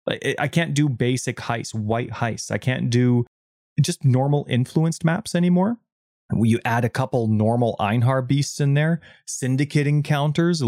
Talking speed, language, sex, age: 145 wpm, English, male, 30-49